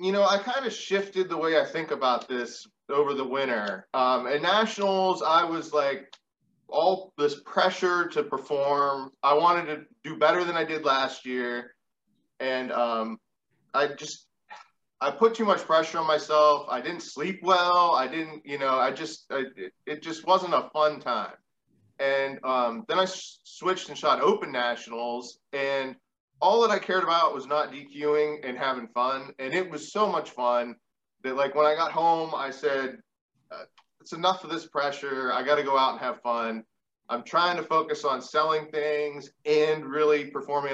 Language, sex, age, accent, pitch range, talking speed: English, male, 20-39, American, 130-165 Hz, 180 wpm